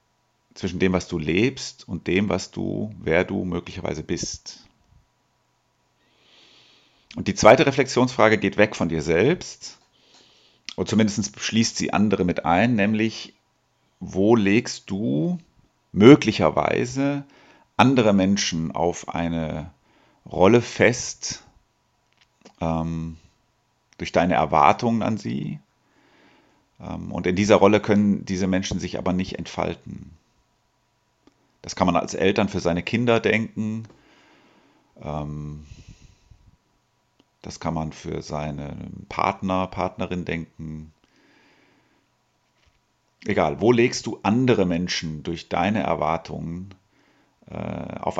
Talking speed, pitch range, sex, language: 105 wpm, 85-110 Hz, male, German